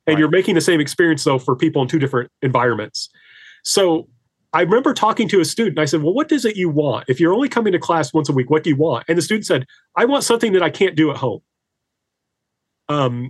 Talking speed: 250 wpm